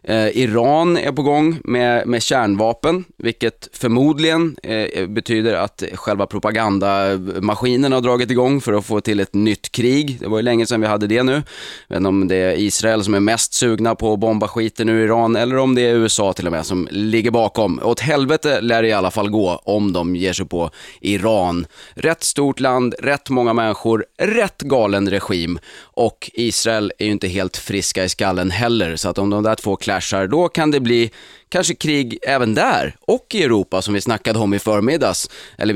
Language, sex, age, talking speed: Swedish, male, 30-49, 195 wpm